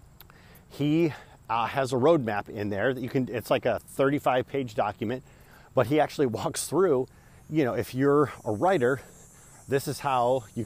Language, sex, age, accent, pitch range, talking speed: English, male, 40-59, American, 110-135 Hz, 175 wpm